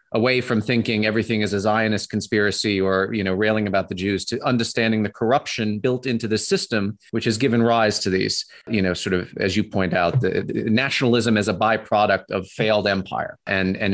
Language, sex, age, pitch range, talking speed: English, male, 30-49, 100-130 Hz, 200 wpm